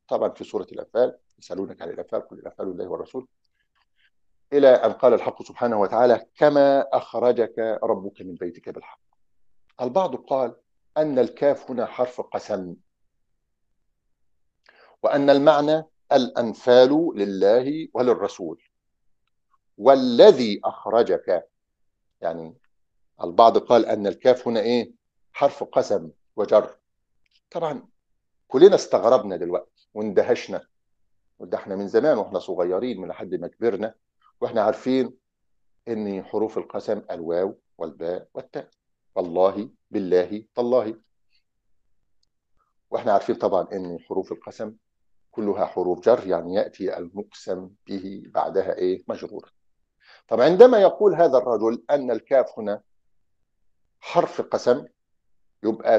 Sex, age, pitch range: male, 50-69, 95-140 Hz